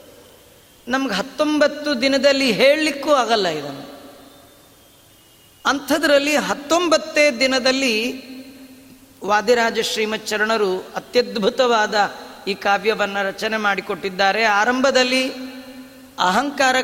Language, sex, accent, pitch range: Kannada, female, native, 235-270 Hz